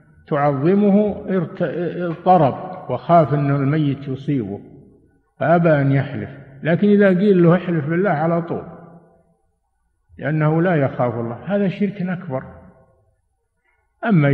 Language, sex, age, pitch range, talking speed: Arabic, male, 60-79, 130-165 Hz, 110 wpm